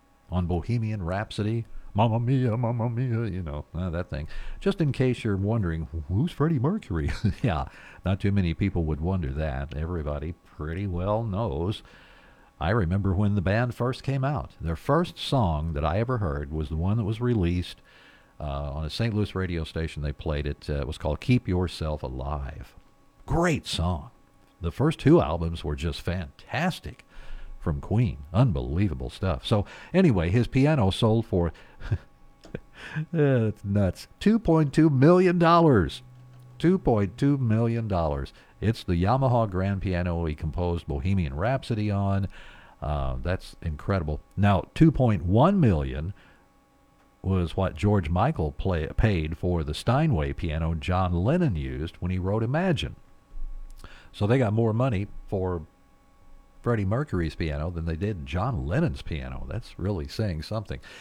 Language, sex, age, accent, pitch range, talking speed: English, male, 50-69, American, 80-120 Hz, 145 wpm